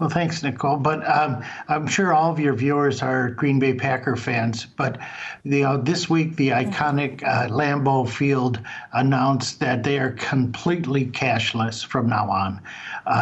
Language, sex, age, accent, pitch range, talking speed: English, male, 60-79, American, 130-160 Hz, 155 wpm